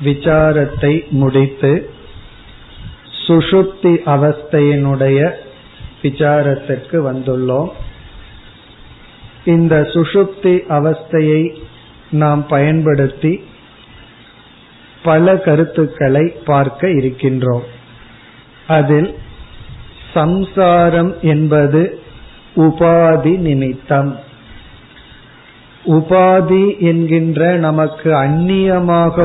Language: Tamil